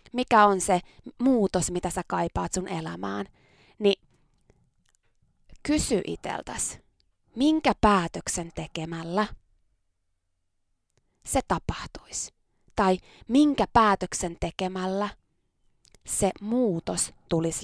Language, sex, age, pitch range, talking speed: Finnish, female, 20-39, 170-235 Hz, 80 wpm